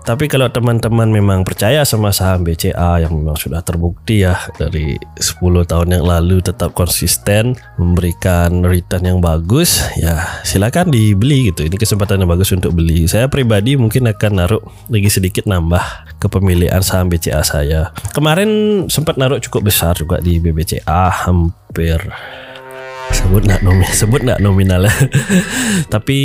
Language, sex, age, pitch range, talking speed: Indonesian, male, 20-39, 90-115 Hz, 145 wpm